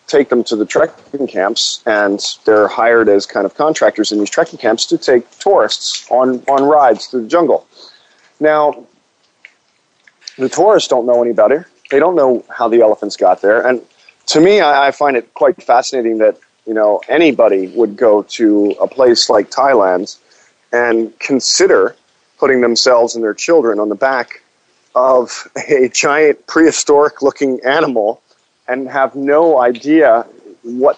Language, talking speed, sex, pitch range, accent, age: English, 155 wpm, male, 110-140 Hz, American, 40-59